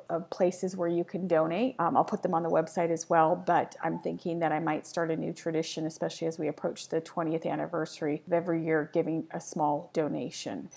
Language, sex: English, female